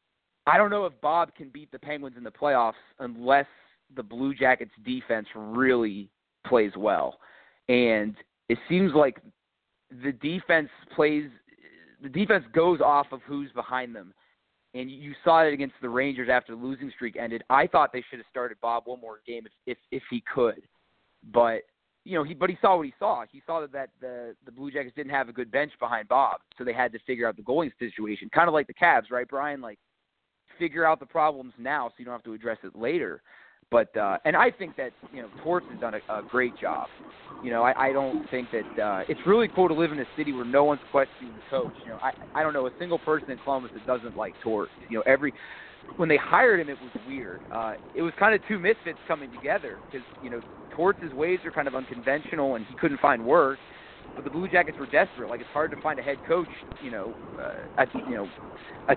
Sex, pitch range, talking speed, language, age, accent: male, 120-150 Hz, 225 wpm, English, 30-49, American